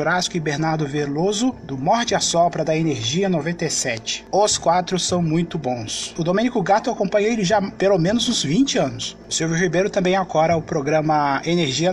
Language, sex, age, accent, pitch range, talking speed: Portuguese, male, 20-39, Brazilian, 160-210 Hz, 170 wpm